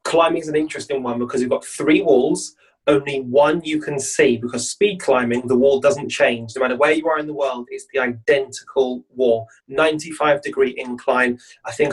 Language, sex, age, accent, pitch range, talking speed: English, male, 30-49, British, 130-170 Hz, 200 wpm